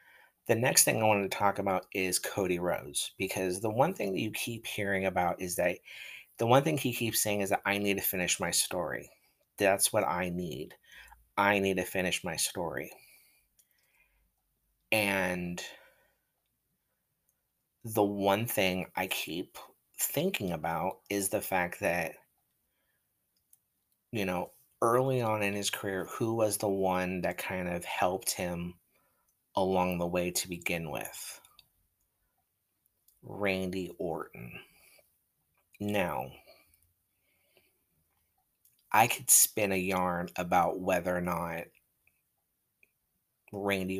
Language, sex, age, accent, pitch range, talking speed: English, male, 30-49, American, 90-100 Hz, 125 wpm